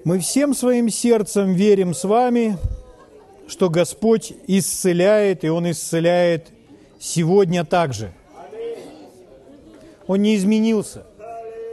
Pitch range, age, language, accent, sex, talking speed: 170-220 Hz, 40-59, Russian, native, male, 90 wpm